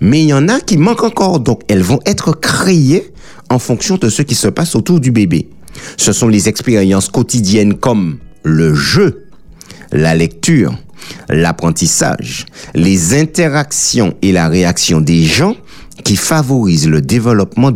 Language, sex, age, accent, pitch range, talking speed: French, male, 60-79, French, 95-150 Hz, 150 wpm